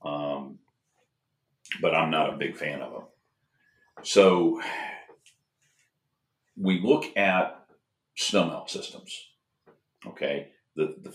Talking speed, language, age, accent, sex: 100 wpm, English, 50-69, American, male